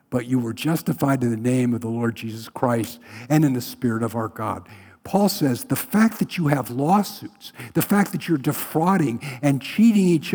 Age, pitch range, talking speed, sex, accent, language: 60-79, 125-195 Hz, 205 wpm, male, American, English